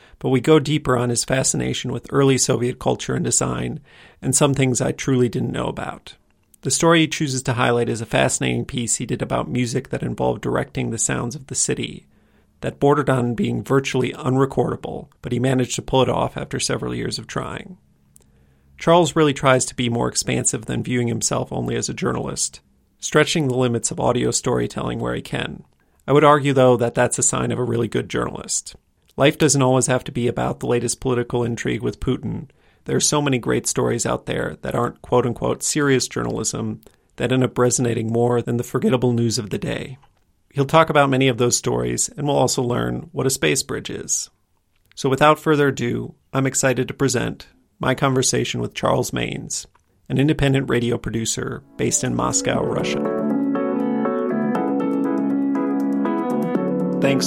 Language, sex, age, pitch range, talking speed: English, male, 40-59, 90-135 Hz, 180 wpm